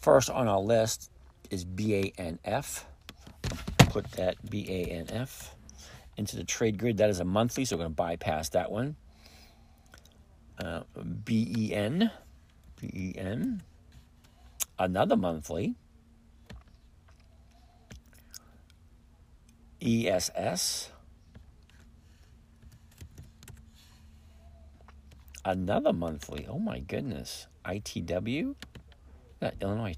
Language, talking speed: English, 75 wpm